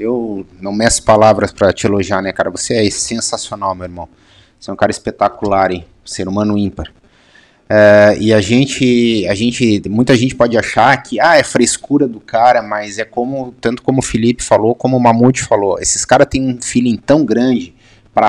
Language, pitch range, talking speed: Portuguese, 110-135 Hz, 195 wpm